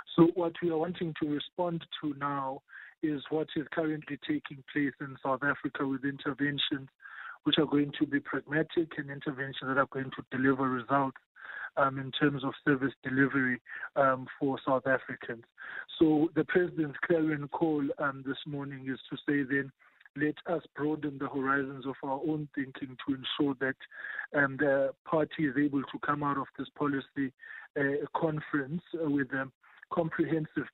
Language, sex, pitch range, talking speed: English, male, 135-155 Hz, 165 wpm